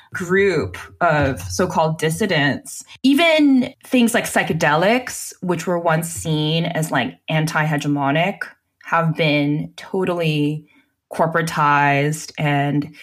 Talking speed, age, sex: 90 wpm, 20-39, female